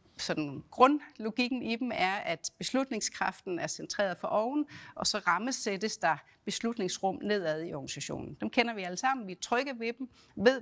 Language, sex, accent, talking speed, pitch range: Danish, female, native, 170 wpm, 180-240 Hz